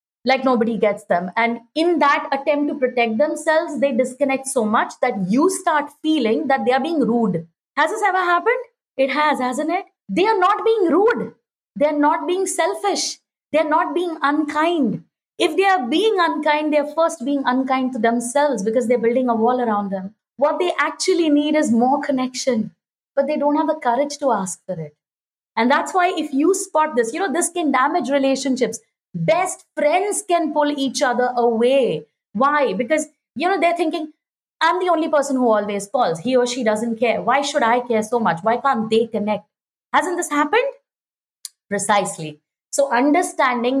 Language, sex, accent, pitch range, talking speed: English, female, Indian, 230-310 Hz, 185 wpm